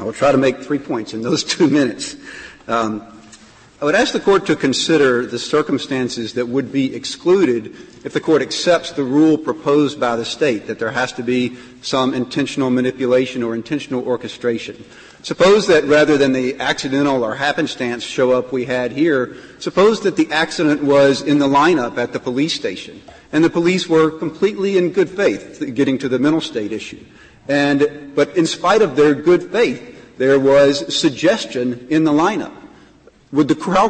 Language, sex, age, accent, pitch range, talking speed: English, male, 50-69, American, 130-175 Hz, 180 wpm